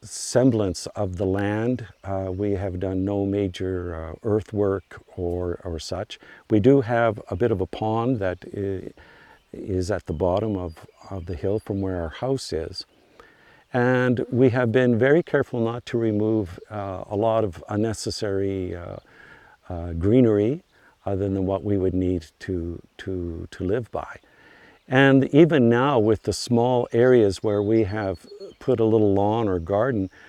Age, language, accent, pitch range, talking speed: 50-69, English, American, 90-110 Hz, 160 wpm